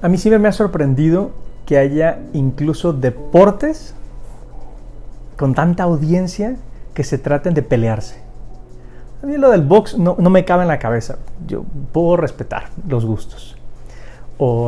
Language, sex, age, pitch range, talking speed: Spanish, male, 40-59, 120-175 Hz, 145 wpm